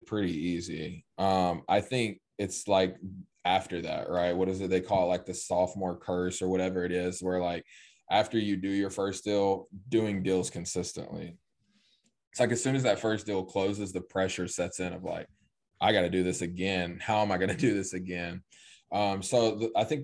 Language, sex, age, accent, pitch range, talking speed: English, male, 20-39, American, 90-100 Hz, 205 wpm